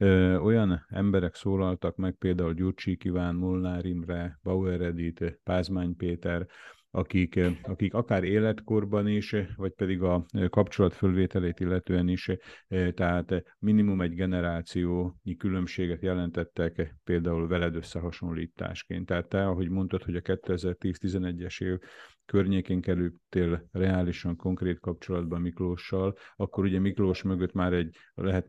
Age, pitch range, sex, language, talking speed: 50-69, 85-95 Hz, male, Hungarian, 110 wpm